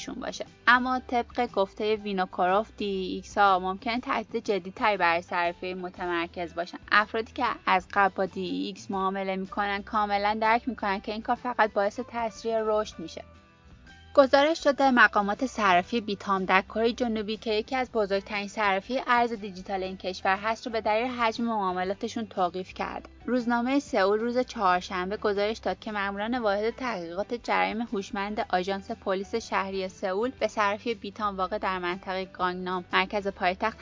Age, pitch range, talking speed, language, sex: 20-39, 195-225 Hz, 150 wpm, Persian, female